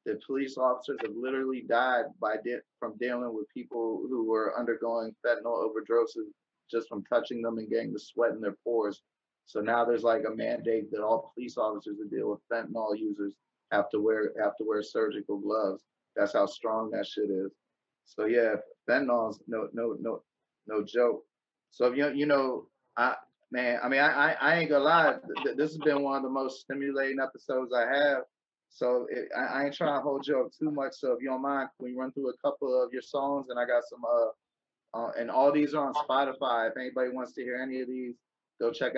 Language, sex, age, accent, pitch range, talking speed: English, male, 20-39, American, 120-140 Hz, 210 wpm